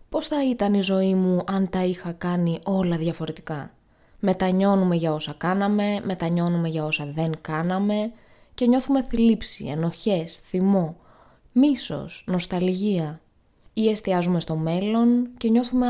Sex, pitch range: female, 170-225 Hz